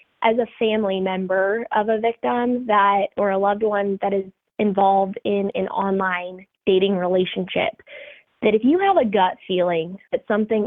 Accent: American